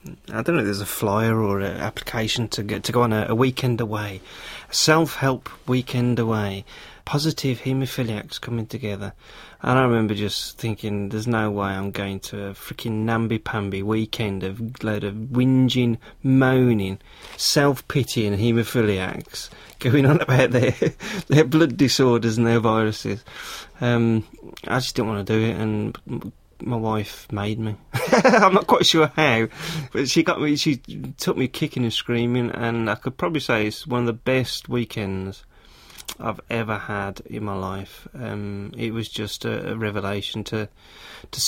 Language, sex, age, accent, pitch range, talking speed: English, male, 30-49, British, 105-130 Hz, 165 wpm